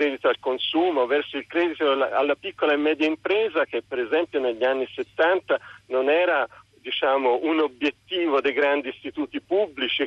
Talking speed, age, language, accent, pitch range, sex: 150 wpm, 50-69, Italian, native, 135-170 Hz, male